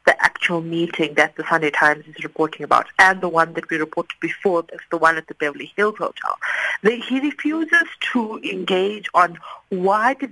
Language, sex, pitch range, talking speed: English, female, 160-215 Hz, 190 wpm